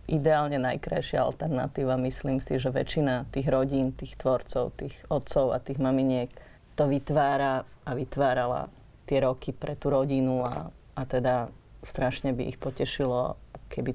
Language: Slovak